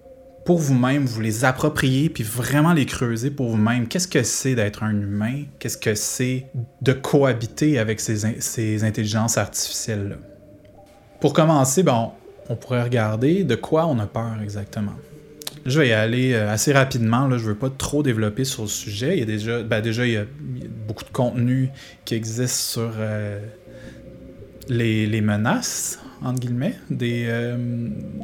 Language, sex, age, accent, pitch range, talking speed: French, male, 20-39, Canadian, 110-135 Hz, 165 wpm